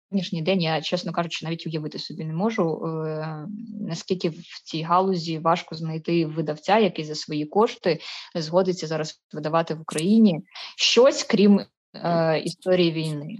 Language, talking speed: Ukrainian, 135 wpm